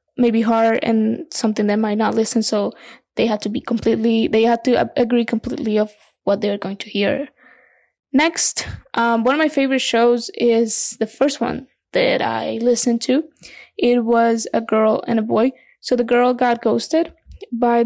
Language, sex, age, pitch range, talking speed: English, female, 20-39, 230-265 Hz, 180 wpm